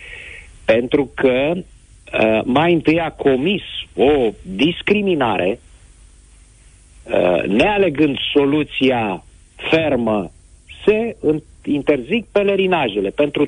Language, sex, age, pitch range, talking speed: Romanian, male, 50-69, 105-140 Hz, 75 wpm